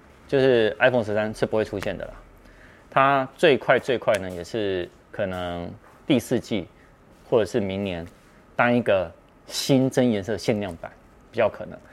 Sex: male